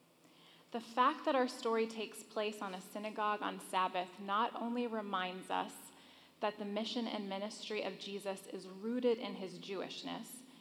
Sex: female